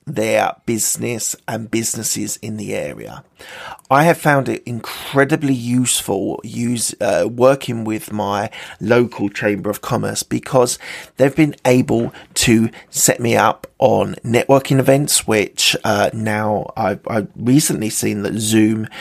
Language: English